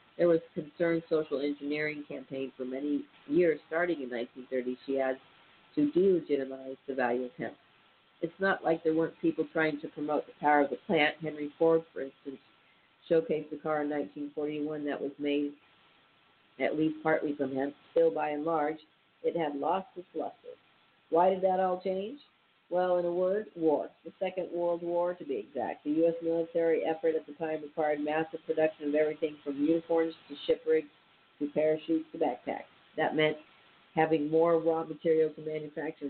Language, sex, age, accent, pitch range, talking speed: English, female, 50-69, American, 145-165 Hz, 180 wpm